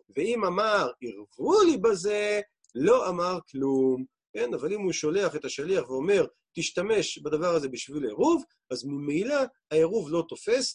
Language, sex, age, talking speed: Hebrew, male, 40-59, 145 wpm